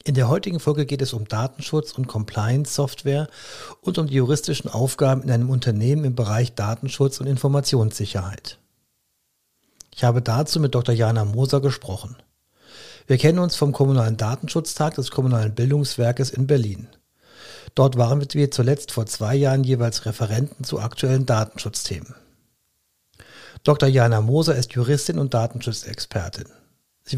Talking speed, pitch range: 135 wpm, 115-145 Hz